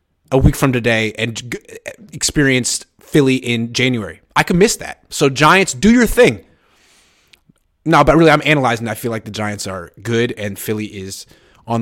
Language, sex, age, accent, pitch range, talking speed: English, male, 20-39, American, 115-155 Hz, 175 wpm